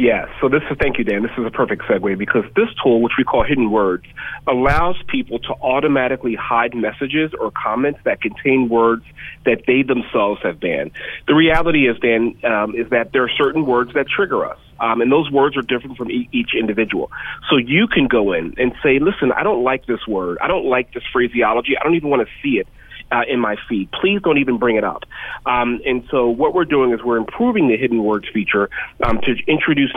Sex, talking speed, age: male, 220 wpm, 30-49